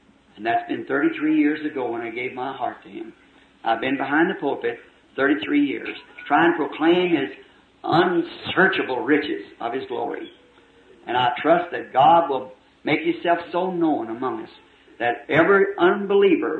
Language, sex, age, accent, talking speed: English, male, 50-69, American, 160 wpm